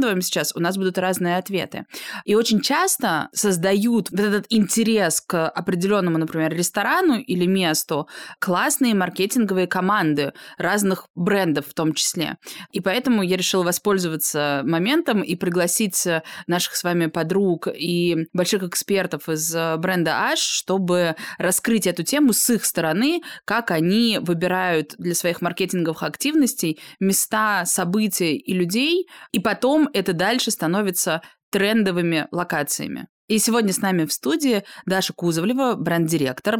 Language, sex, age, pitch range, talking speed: Russian, female, 20-39, 170-210 Hz, 130 wpm